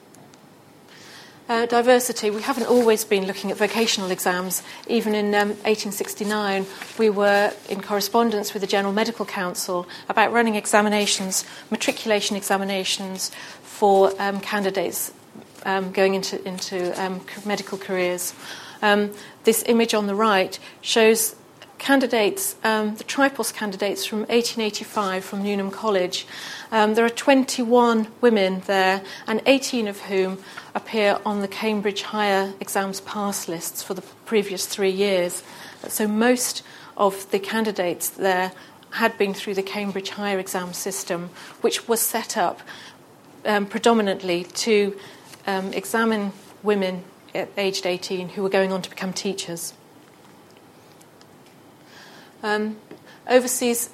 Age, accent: 40-59, British